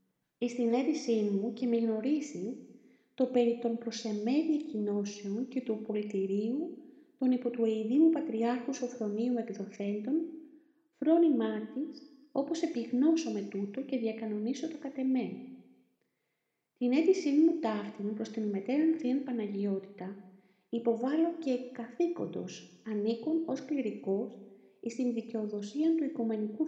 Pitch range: 210-280 Hz